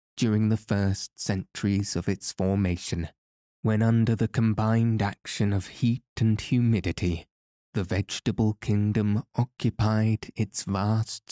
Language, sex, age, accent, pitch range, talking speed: English, male, 20-39, British, 90-110 Hz, 115 wpm